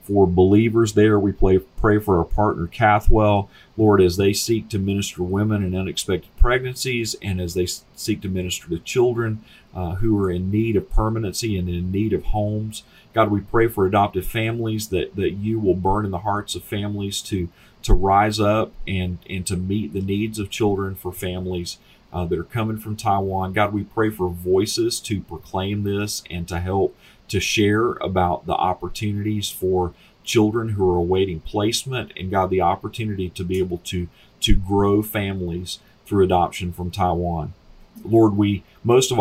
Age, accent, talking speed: 40-59, American, 180 wpm